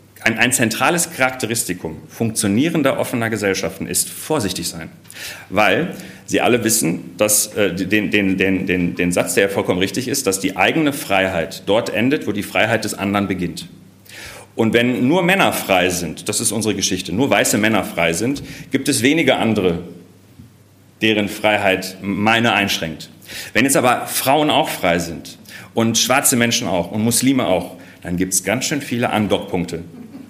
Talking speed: 165 wpm